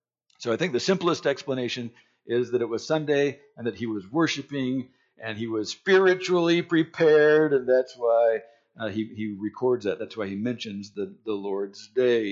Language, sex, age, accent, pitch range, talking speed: English, male, 60-79, American, 130-215 Hz, 180 wpm